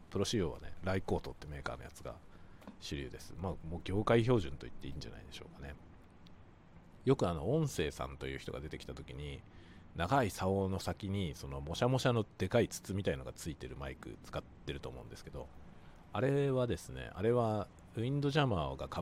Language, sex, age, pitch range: Japanese, male, 40-59, 80-105 Hz